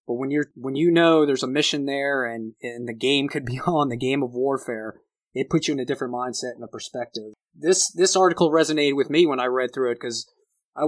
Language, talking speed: English, 245 wpm